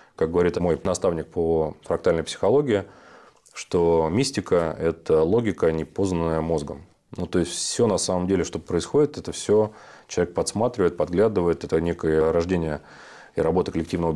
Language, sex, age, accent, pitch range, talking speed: Russian, male, 30-49, native, 80-90 Hz, 145 wpm